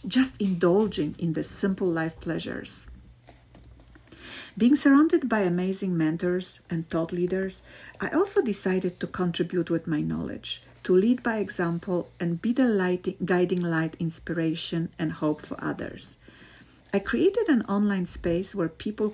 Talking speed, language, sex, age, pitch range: 140 wpm, English, female, 50-69, 165-190 Hz